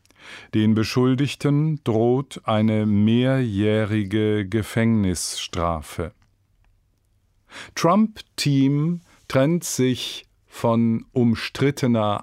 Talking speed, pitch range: 55 wpm, 100-125 Hz